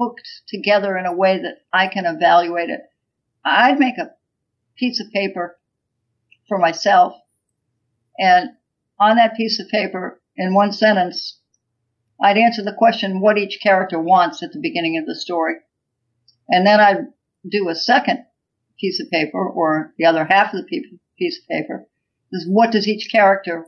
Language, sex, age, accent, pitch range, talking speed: English, female, 60-79, American, 165-210 Hz, 160 wpm